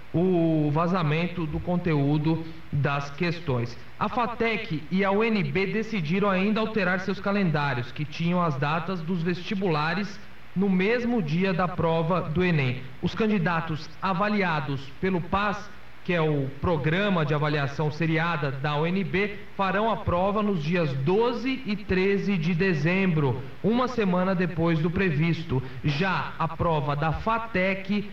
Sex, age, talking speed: male, 40-59, 135 wpm